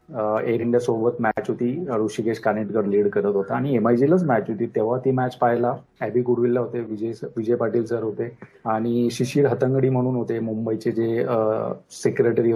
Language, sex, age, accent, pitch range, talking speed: Marathi, male, 30-49, native, 115-130 Hz, 160 wpm